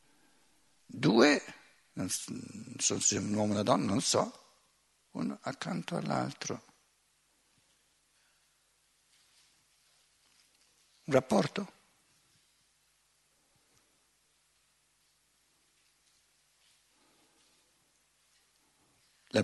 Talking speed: 50 wpm